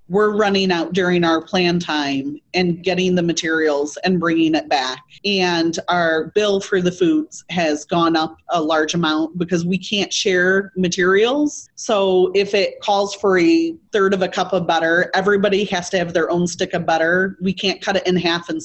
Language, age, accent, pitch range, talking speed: English, 30-49, American, 165-205 Hz, 195 wpm